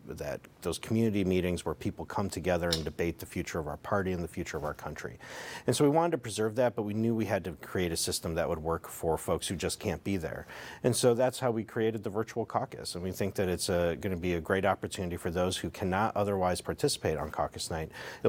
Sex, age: male, 40-59